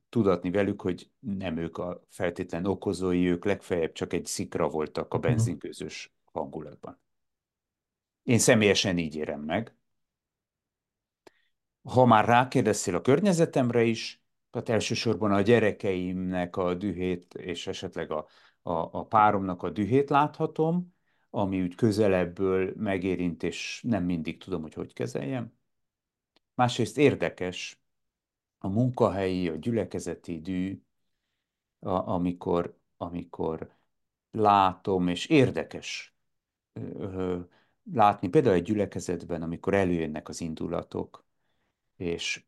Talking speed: 105 wpm